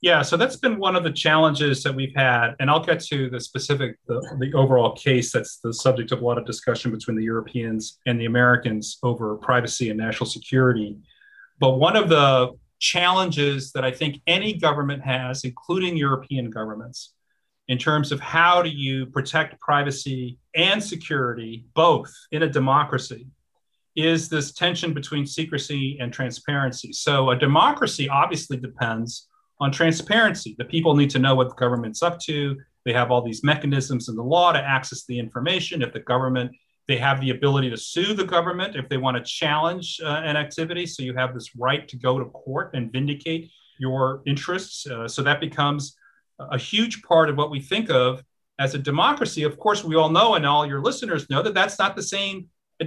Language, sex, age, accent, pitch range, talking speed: English, male, 40-59, American, 125-170 Hz, 190 wpm